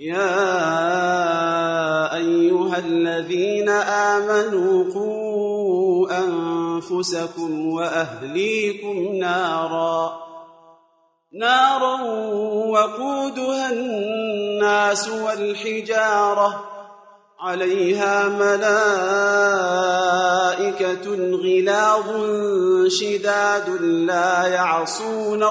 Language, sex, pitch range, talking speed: Arabic, male, 170-210 Hz, 40 wpm